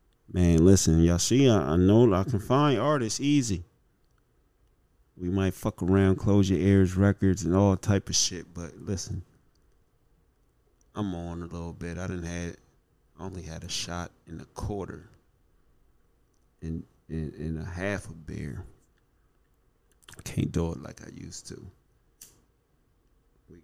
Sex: male